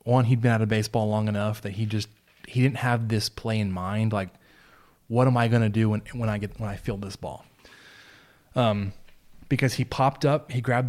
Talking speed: 220 wpm